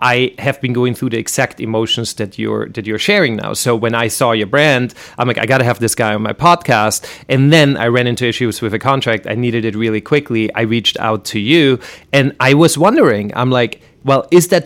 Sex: male